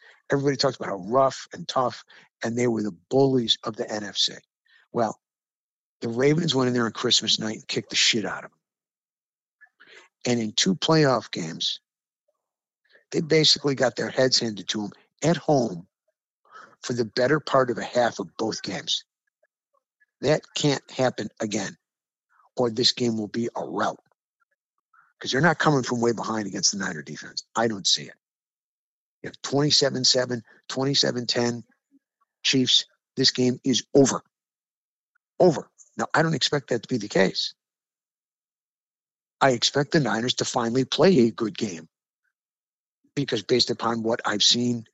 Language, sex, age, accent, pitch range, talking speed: English, male, 50-69, American, 120-150 Hz, 155 wpm